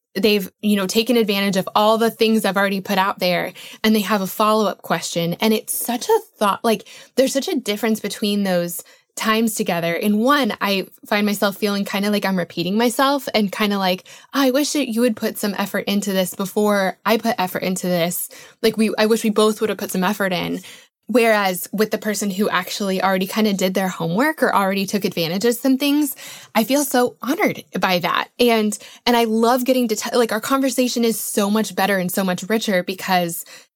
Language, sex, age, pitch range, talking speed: English, female, 20-39, 195-230 Hz, 215 wpm